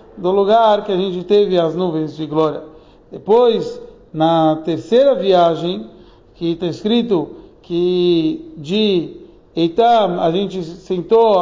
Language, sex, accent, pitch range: Portuguese, male, Brazilian, 180-225 Hz